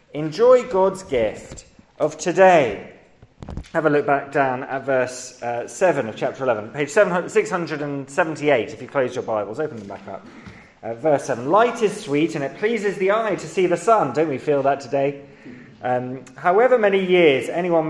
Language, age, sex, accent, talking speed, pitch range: English, 30-49, male, British, 180 wpm, 135-200 Hz